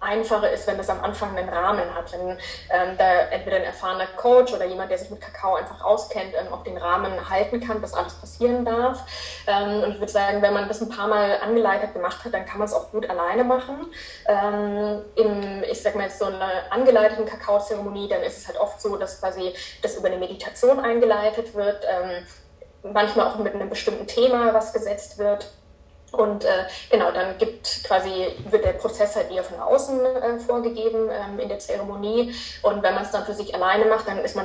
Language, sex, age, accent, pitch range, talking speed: German, female, 20-39, German, 195-225 Hz, 210 wpm